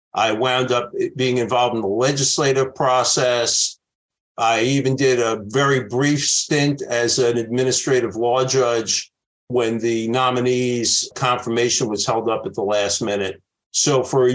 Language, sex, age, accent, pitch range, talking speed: English, male, 50-69, American, 115-140 Hz, 145 wpm